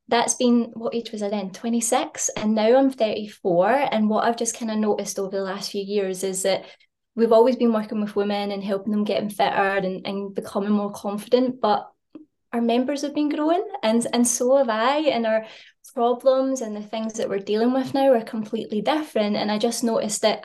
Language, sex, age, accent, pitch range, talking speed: English, female, 20-39, British, 205-240 Hz, 215 wpm